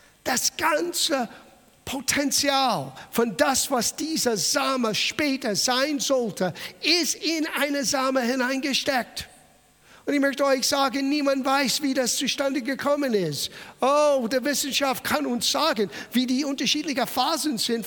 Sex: male